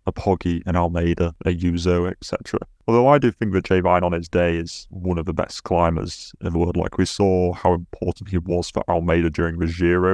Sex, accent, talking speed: male, British, 225 wpm